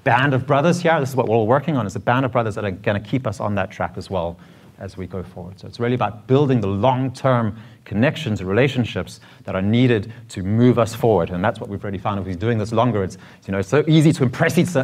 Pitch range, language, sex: 100-135 Hz, English, male